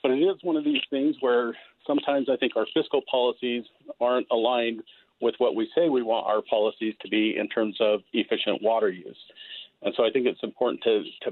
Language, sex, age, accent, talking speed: English, male, 50-69, American, 210 wpm